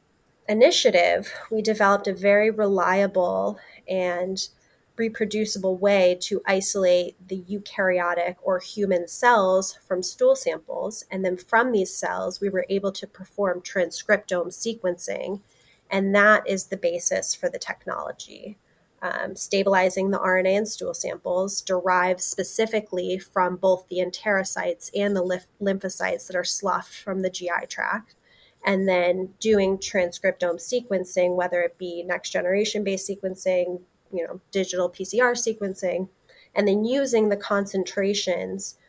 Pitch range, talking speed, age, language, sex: 180-205 Hz, 125 wpm, 30-49, English, female